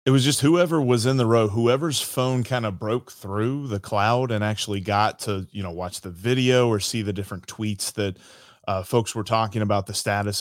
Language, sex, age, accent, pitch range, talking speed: English, male, 20-39, American, 105-125 Hz, 220 wpm